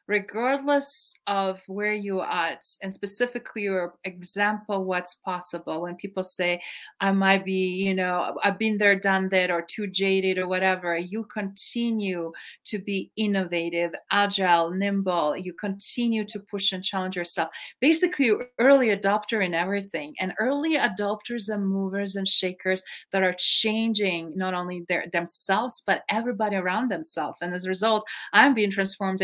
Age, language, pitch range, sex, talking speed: 30-49, English, 190-260 Hz, female, 155 wpm